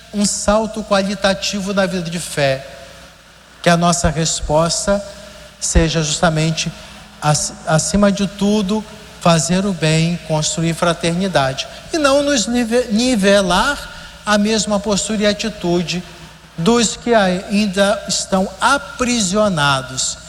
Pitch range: 155-200 Hz